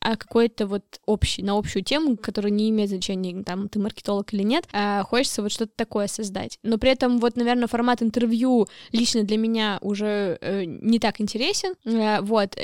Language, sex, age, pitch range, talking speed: Russian, female, 10-29, 205-235 Hz, 180 wpm